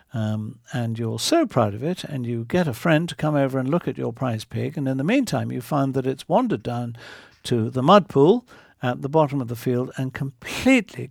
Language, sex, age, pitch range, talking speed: English, male, 60-79, 120-190 Hz, 230 wpm